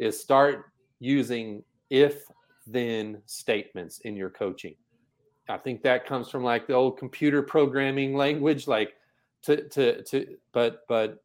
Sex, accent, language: male, American, English